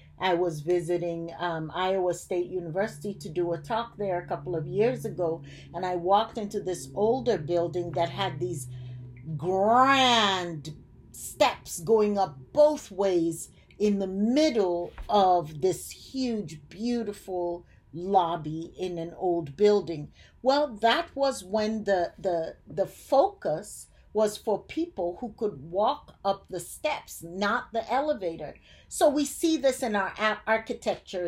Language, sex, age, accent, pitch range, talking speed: English, female, 50-69, American, 165-220 Hz, 140 wpm